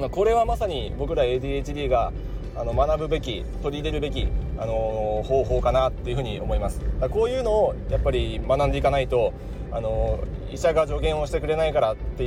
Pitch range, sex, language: 110-150 Hz, male, Japanese